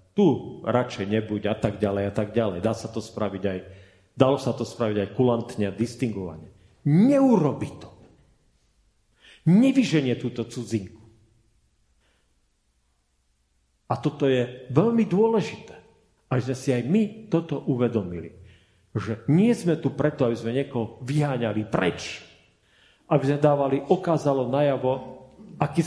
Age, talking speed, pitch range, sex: 40-59, 130 wpm, 105-140 Hz, male